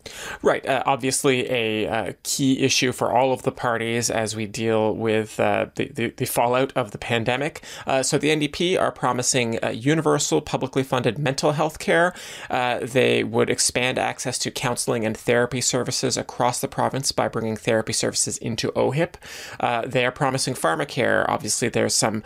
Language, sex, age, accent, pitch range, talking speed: English, male, 30-49, American, 115-135 Hz, 170 wpm